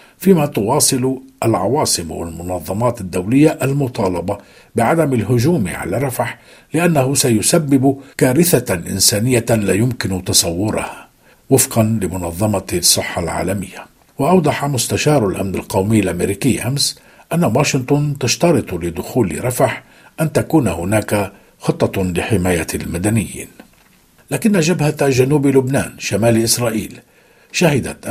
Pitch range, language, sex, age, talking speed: 100-145 Hz, Arabic, male, 50-69, 95 wpm